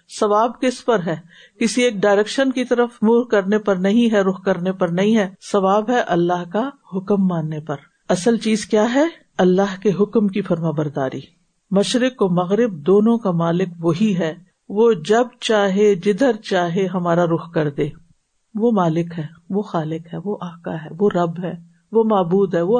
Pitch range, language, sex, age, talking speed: 175-235 Hz, Urdu, female, 50-69, 180 wpm